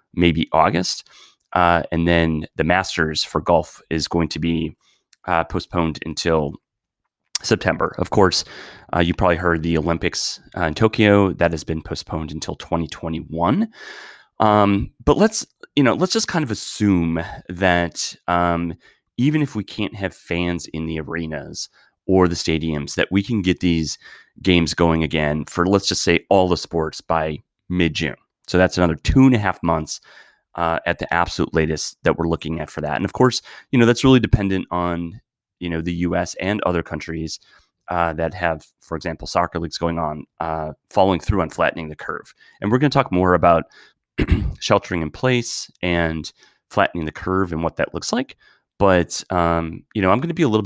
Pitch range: 80-100 Hz